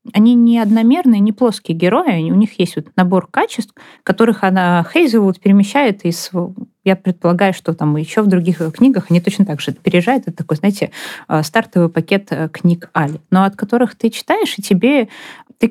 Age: 20-39